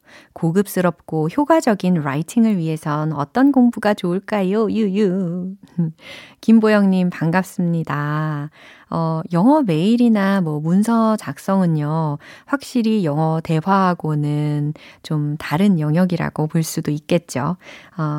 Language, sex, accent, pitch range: Korean, female, native, 155-225 Hz